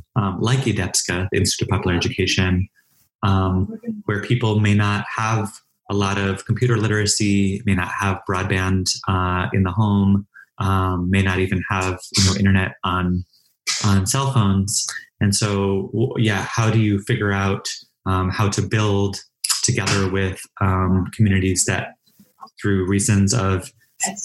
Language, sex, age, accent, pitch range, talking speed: English, male, 20-39, American, 95-110 Hz, 145 wpm